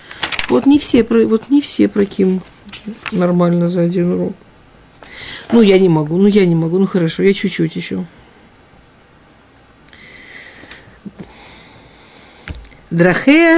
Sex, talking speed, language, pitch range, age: female, 120 wpm, Russian, 175-225 Hz, 50-69